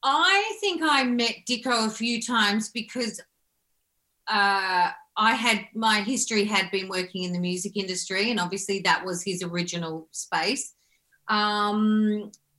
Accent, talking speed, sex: Australian, 140 wpm, female